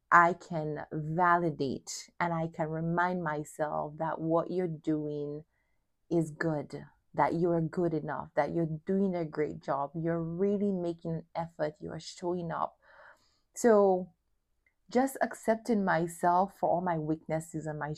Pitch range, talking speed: 160-200 Hz, 145 wpm